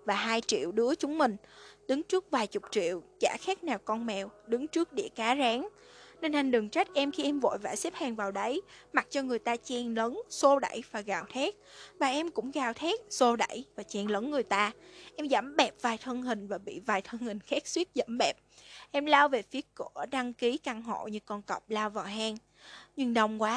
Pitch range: 225-295 Hz